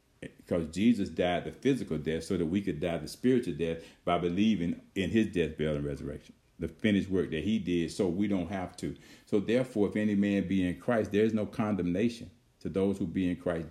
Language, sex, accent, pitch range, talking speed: English, male, American, 90-105 Hz, 225 wpm